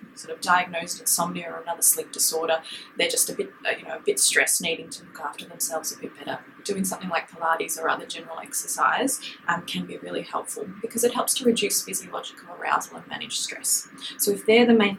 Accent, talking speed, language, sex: Australian, 210 wpm, English, female